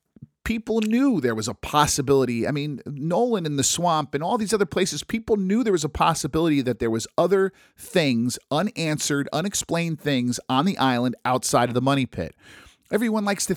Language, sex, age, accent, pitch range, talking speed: English, male, 50-69, American, 115-150 Hz, 185 wpm